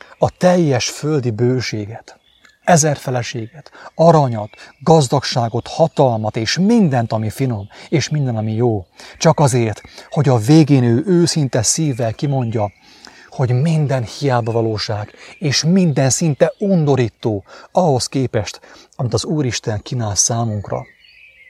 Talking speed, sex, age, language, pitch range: 110 wpm, male, 30-49, English, 115-155 Hz